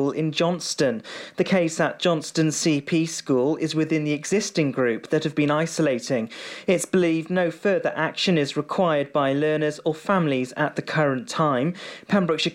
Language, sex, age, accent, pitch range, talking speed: English, male, 40-59, British, 145-175 Hz, 160 wpm